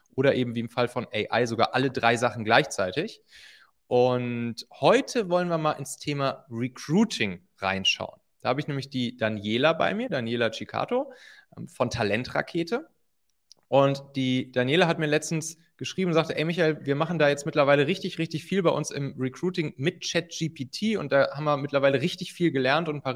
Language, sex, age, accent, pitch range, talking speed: German, male, 30-49, German, 130-160 Hz, 180 wpm